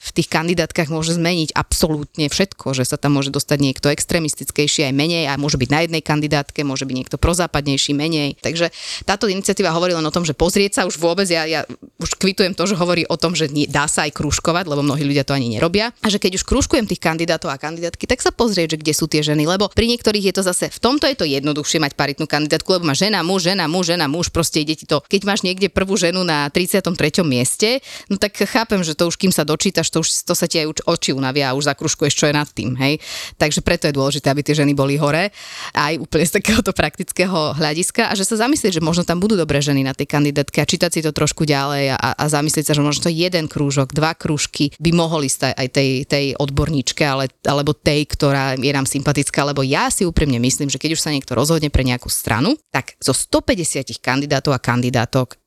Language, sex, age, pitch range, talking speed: Slovak, female, 20-39, 140-175 Hz, 230 wpm